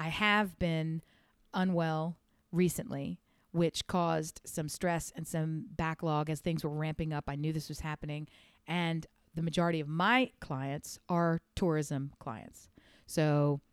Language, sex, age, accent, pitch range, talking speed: English, female, 40-59, American, 155-185 Hz, 140 wpm